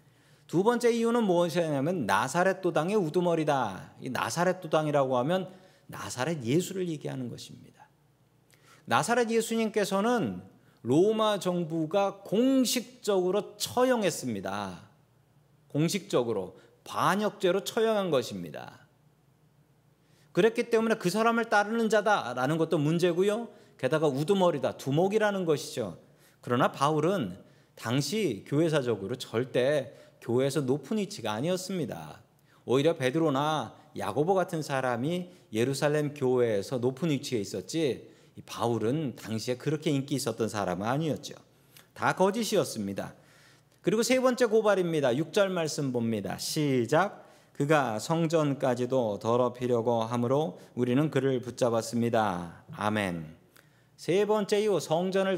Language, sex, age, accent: Korean, male, 40-59, native